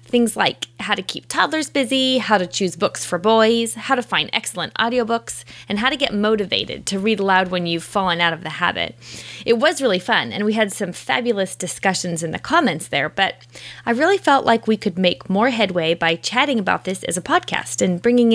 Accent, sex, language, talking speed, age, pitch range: American, female, English, 215 wpm, 20-39, 180-240 Hz